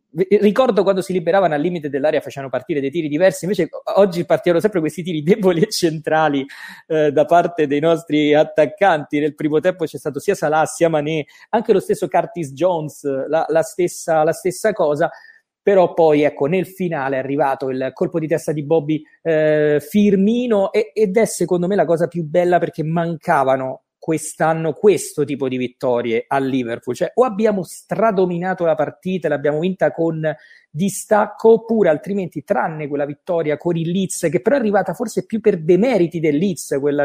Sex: male